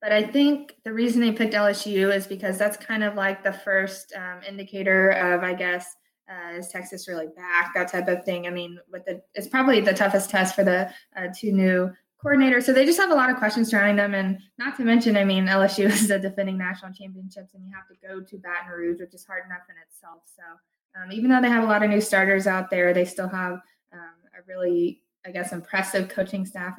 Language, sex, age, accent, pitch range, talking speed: English, female, 20-39, American, 180-210 Hz, 235 wpm